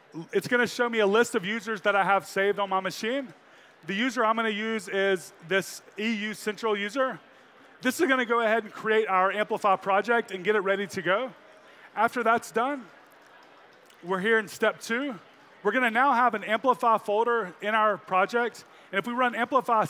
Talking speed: 205 wpm